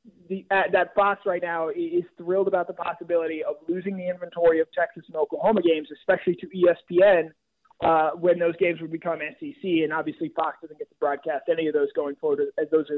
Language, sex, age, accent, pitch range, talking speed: English, male, 20-39, American, 160-195 Hz, 205 wpm